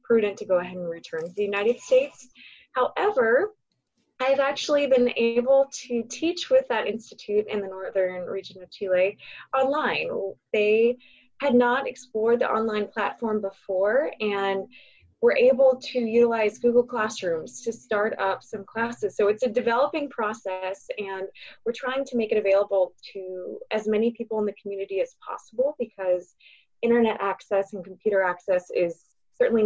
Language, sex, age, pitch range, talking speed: English, female, 20-39, 200-255 Hz, 155 wpm